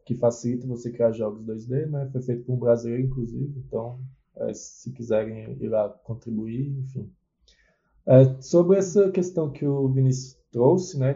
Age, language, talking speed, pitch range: 20-39, Portuguese, 165 wpm, 120-145 Hz